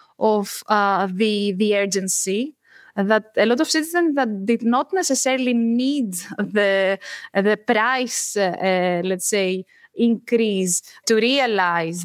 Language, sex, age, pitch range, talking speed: English, female, 20-39, 205-260 Hz, 125 wpm